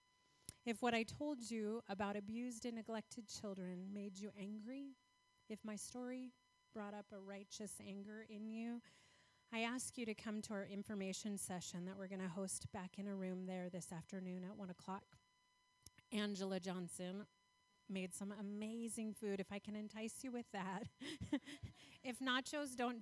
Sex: female